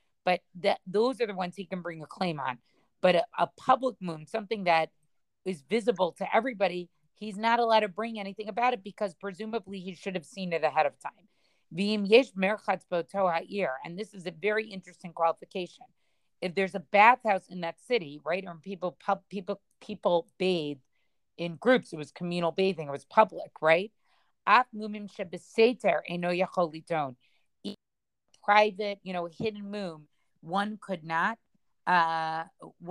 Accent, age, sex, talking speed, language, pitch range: American, 40-59, female, 150 wpm, English, 170-210 Hz